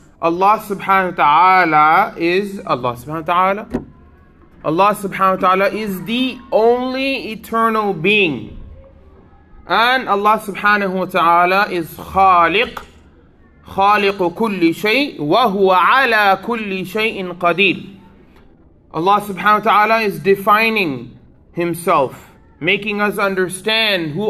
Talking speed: 110 wpm